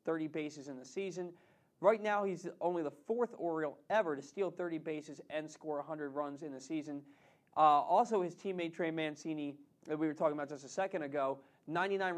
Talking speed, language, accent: 195 wpm, English, American